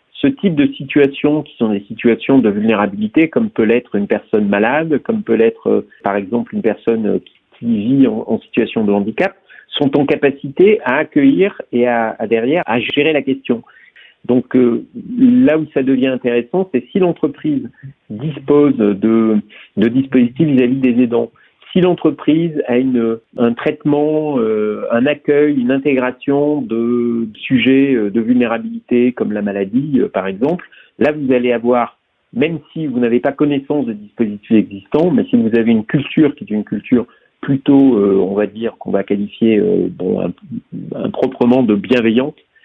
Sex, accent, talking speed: male, French, 165 wpm